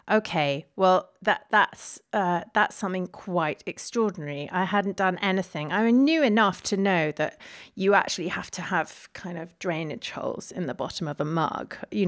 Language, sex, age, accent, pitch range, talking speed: English, female, 40-59, British, 175-230 Hz, 175 wpm